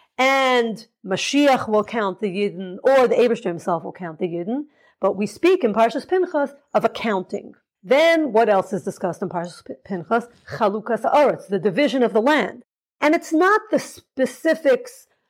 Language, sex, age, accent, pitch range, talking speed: English, female, 40-59, American, 200-275 Hz, 165 wpm